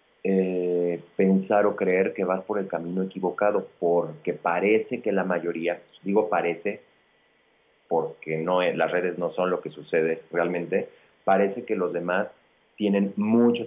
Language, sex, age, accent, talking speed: Spanish, male, 40-59, Mexican, 150 wpm